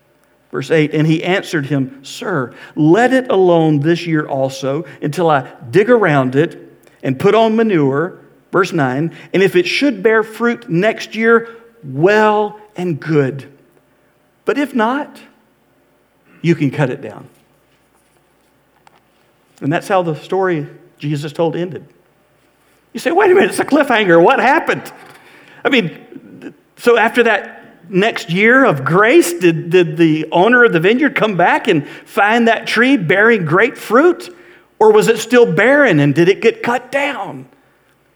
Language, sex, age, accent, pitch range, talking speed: English, male, 50-69, American, 150-230 Hz, 155 wpm